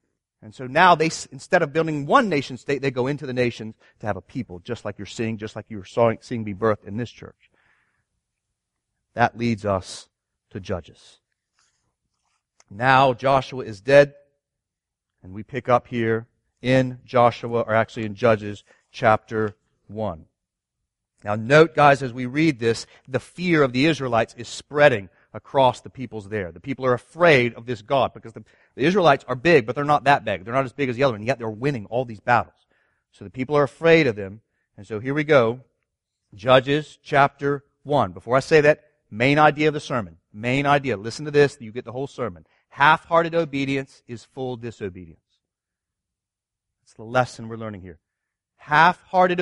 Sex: male